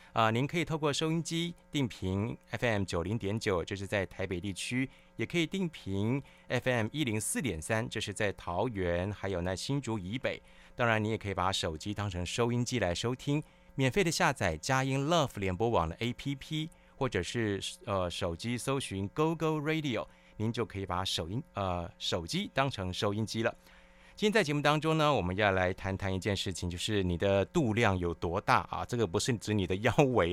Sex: male